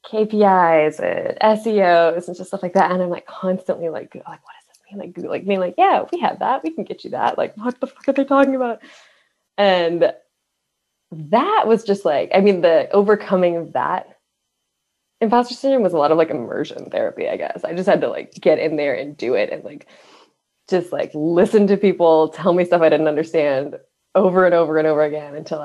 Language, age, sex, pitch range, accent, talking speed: English, 20-39, female, 170-250 Hz, American, 215 wpm